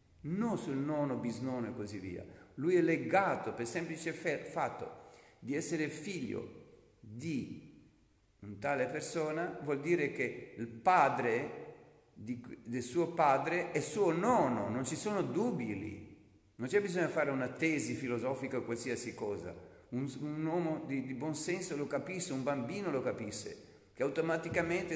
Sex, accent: male, native